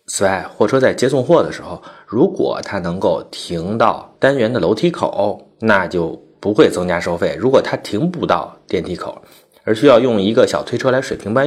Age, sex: 30-49, male